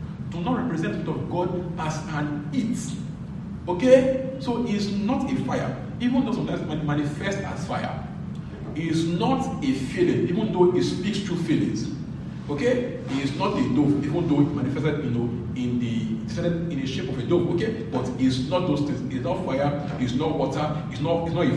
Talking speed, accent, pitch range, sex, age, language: 190 wpm, Nigerian, 145-195 Hz, male, 40-59, English